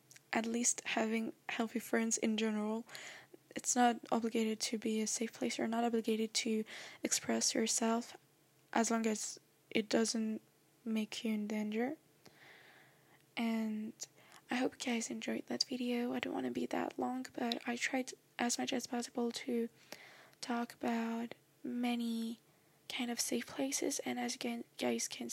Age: 10-29